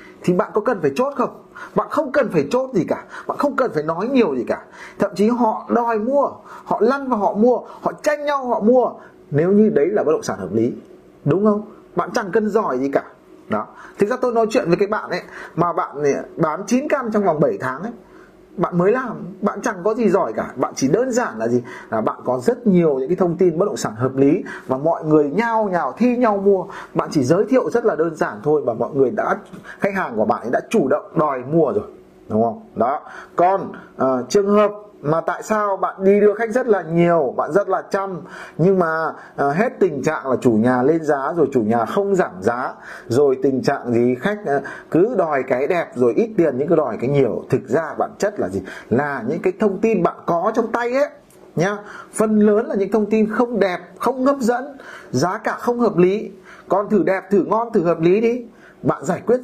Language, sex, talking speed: Vietnamese, male, 235 wpm